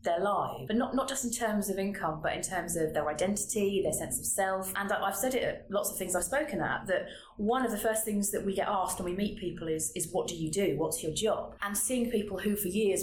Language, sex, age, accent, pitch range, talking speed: English, female, 30-49, British, 155-195 Hz, 275 wpm